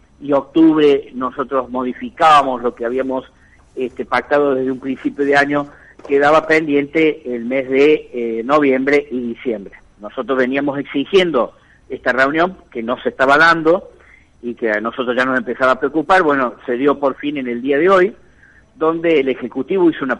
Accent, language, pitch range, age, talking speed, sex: Argentinian, Spanish, 120-145 Hz, 50-69, 165 wpm, male